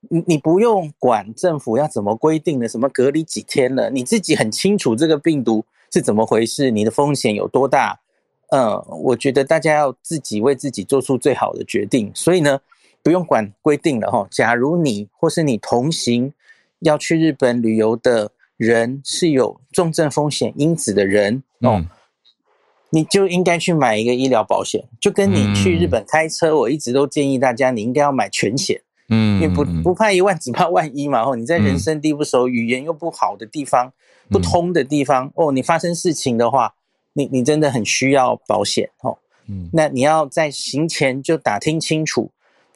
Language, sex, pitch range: Chinese, male, 120-160 Hz